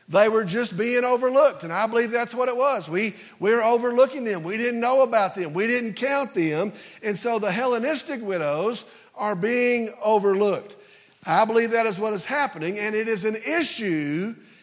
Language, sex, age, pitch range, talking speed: English, male, 50-69, 195-245 Hz, 180 wpm